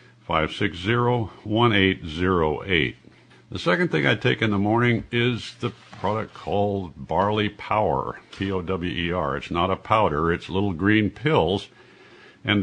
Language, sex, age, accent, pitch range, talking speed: English, male, 60-79, American, 85-115 Hz, 145 wpm